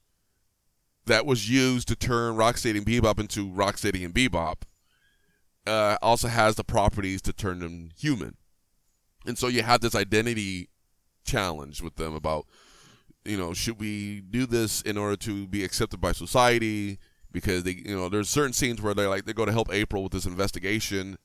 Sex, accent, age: male, American, 20-39